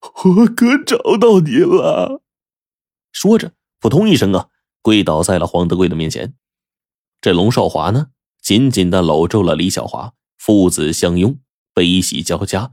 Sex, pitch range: male, 90-135 Hz